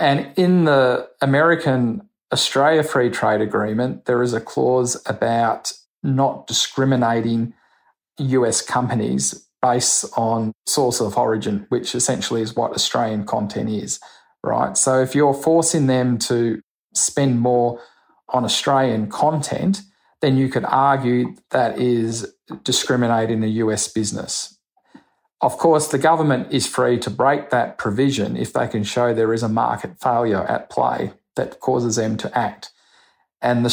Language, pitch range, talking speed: English, 115-140 Hz, 140 wpm